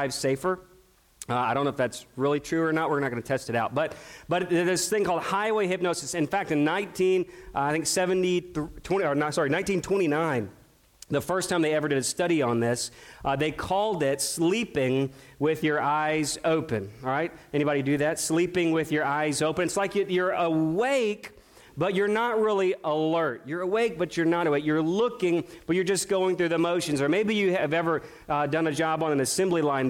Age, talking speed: 40-59, 215 wpm